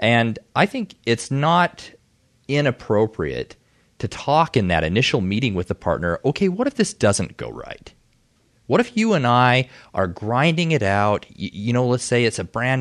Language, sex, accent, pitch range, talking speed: English, male, American, 100-125 Hz, 180 wpm